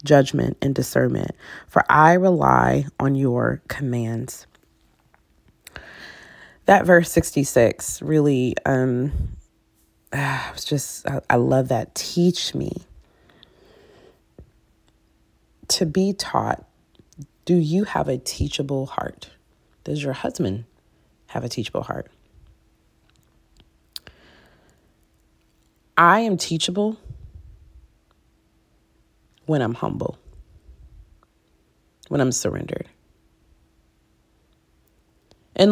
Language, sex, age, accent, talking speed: English, female, 30-49, American, 80 wpm